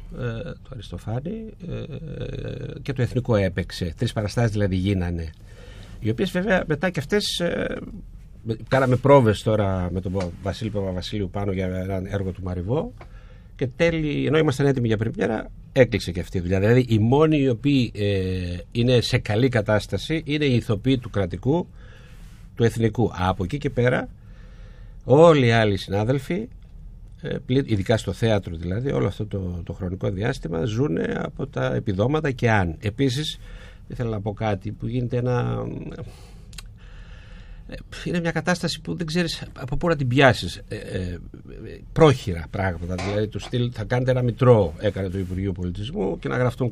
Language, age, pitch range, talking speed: Greek, 60-79, 100-140 Hz, 155 wpm